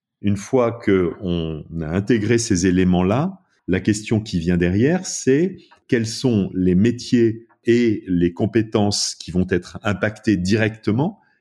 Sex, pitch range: male, 90-120 Hz